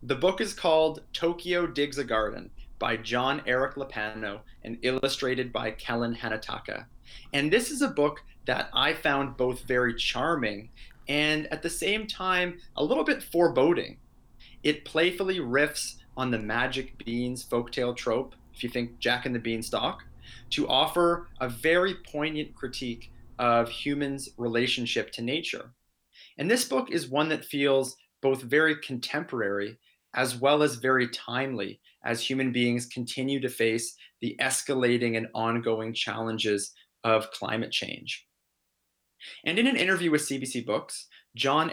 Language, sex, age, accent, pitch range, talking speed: English, male, 30-49, American, 115-150 Hz, 145 wpm